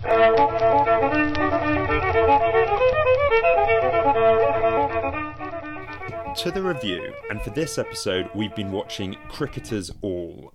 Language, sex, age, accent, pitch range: English, male, 30-49, British, 90-125 Hz